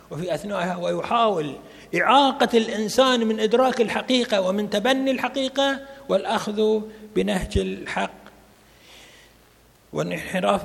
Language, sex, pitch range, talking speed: Arabic, male, 170-220 Hz, 85 wpm